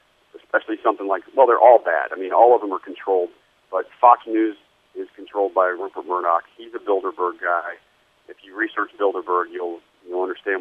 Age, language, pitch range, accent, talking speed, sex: 40-59, English, 300-390 Hz, American, 185 wpm, male